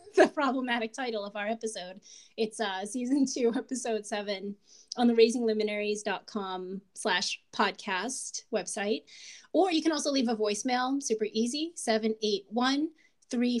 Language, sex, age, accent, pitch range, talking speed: English, female, 20-39, American, 215-245 Hz, 140 wpm